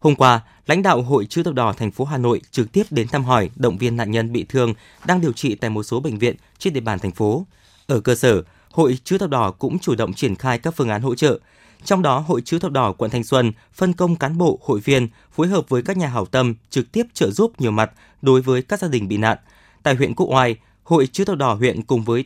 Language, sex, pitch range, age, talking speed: Vietnamese, male, 115-150 Hz, 20-39, 265 wpm